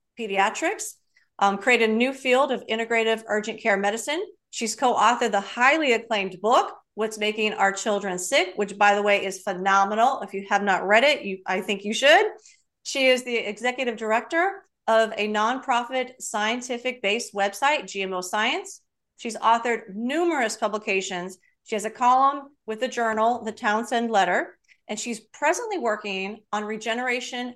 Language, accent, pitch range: English, American, 210-265 Hz